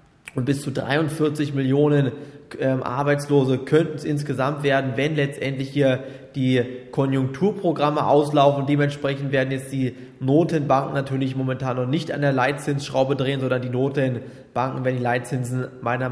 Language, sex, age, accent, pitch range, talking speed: German, male, 20-39, German, 130-150 Hz, 140 wpm